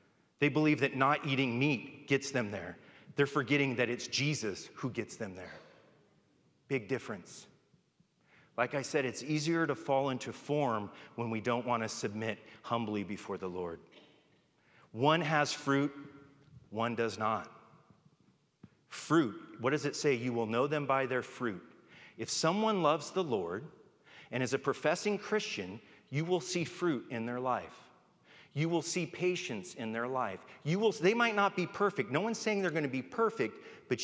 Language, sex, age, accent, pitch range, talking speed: English, male, 40-59, American, 125-180 Hz, 170 wpm